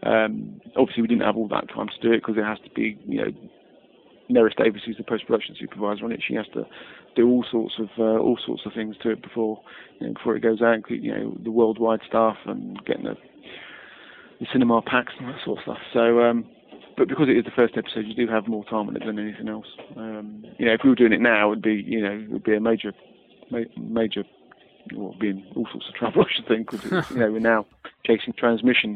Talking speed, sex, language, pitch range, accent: 230 wpm, male, English, 110-115 Hz, British